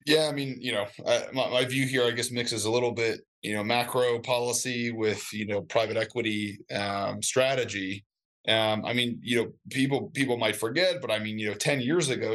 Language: English